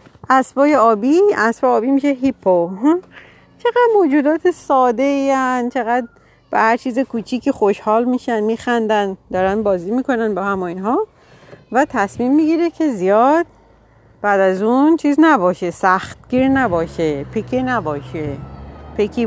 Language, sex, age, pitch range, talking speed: Persian, female, 40-59, 190-270 Hz, 130 wpm